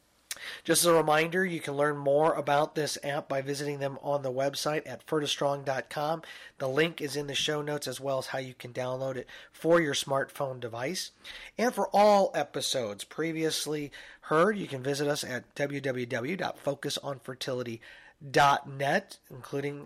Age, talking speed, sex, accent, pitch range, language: 30-49, 160 wpm, male, American, 130-165 Hz, English